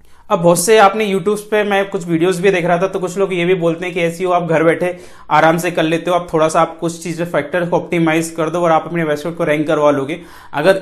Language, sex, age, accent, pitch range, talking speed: Hindi, male, 30-49, native, 155-190 Hz, 285 wpm